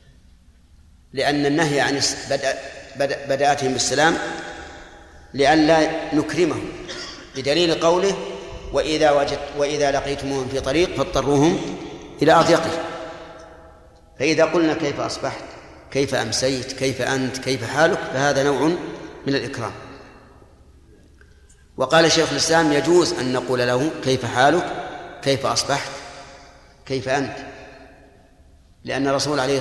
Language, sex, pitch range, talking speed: Arabic, male, 130-150 Hz, 100 wpm